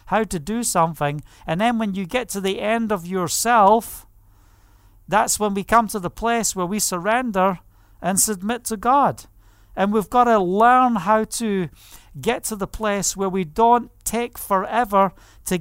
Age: 50-69